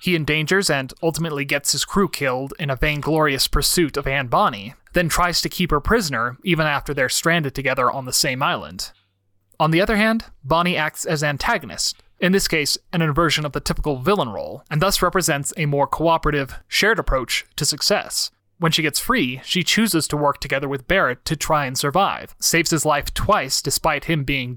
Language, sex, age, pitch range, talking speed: English, male, 30-49, 140-175 Hz, 195 wpm